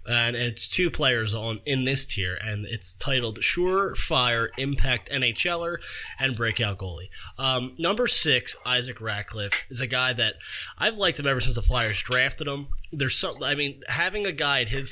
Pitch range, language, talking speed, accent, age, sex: 115-145 Hz, English, 180 wpm, American, 20-39, male